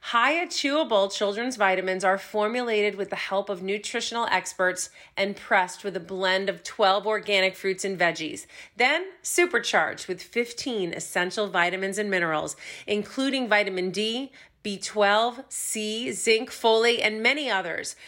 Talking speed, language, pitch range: 135 wpm, English, 190-255 Hz